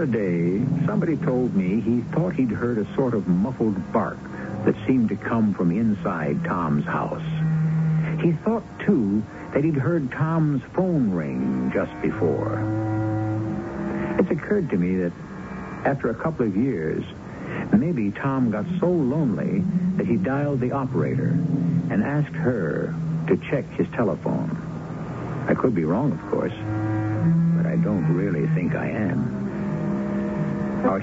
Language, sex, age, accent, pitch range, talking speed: English, male, 60-79, American, 100-160 Hz, 140 wpm